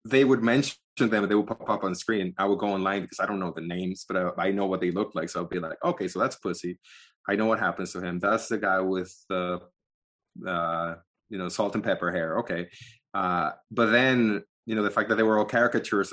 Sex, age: male, 20-39